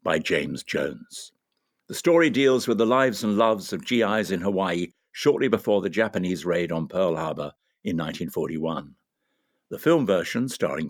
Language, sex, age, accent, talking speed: English, male, 60-79, British, 160 wpm